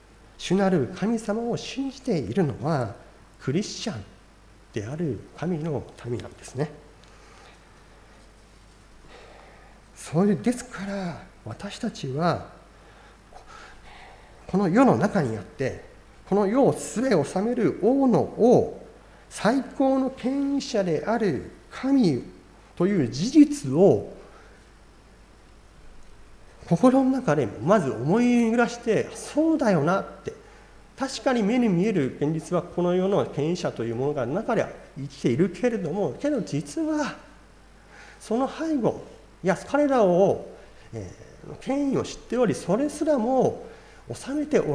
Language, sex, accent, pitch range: Japanese, male, native, 150-245 Hz